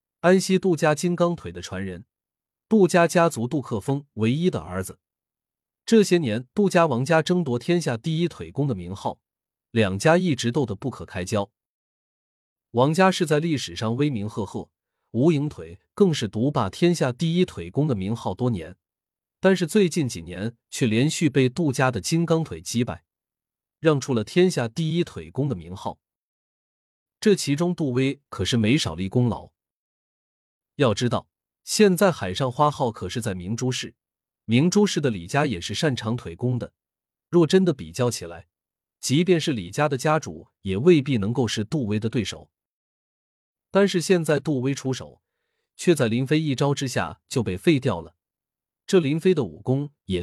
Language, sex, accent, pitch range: Chinese, male, native, 100-160 Hz